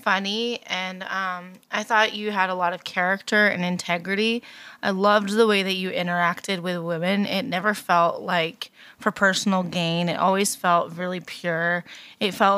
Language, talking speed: English, 170 wpm